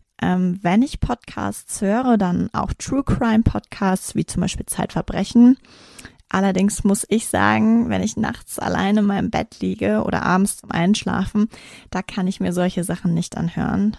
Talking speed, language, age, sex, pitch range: 155 wpm, German, 20-39, female, 175-205 Hz